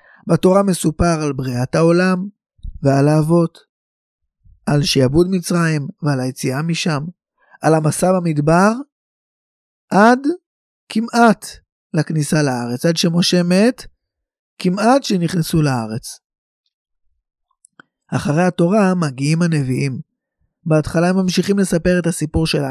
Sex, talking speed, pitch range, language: male, 100 wpm, 150-190 Hz, Hebrew